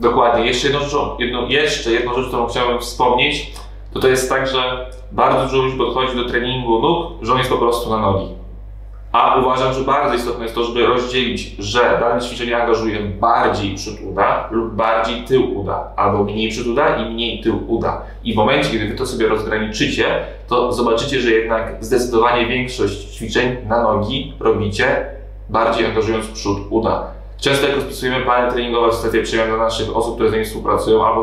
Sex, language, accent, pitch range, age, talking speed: male, Polish, native, 110-125 Hz, 20-39, 185 wpm